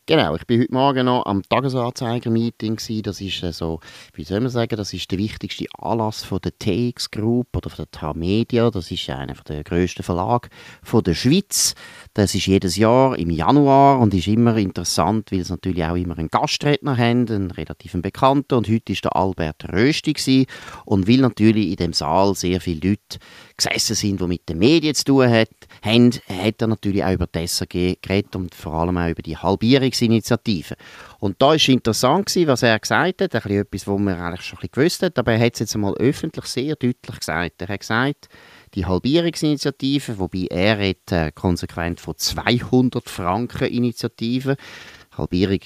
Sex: male